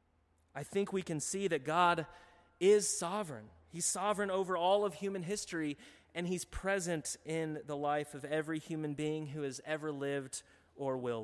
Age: 30-49